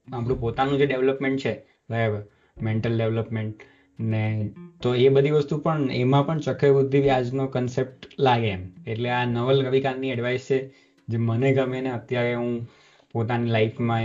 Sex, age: male, 20-39